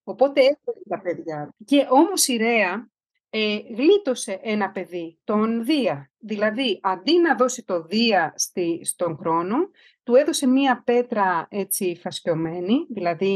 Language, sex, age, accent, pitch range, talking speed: Greek, female, 40-59, native, 205-275 Hz, 130 wpm